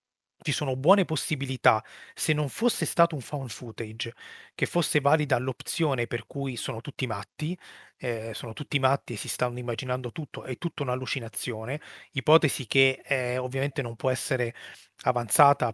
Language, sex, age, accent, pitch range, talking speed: Italian, male, 30-49, native, 125-150 Hz, 155 wpm